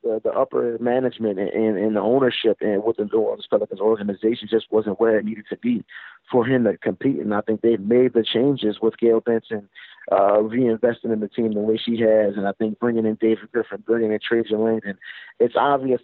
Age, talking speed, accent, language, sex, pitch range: 30-49, 215 wpm, American, English, male, 110-120 Hz